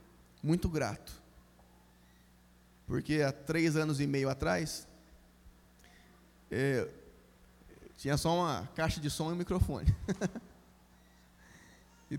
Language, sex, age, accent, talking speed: Portuguese, male, 20-39, Brazilian, 95 wpm